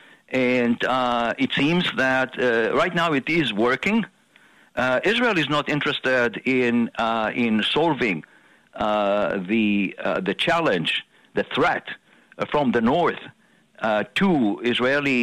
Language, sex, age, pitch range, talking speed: English, male, 60-79, 115-145 Hz, 130 wpm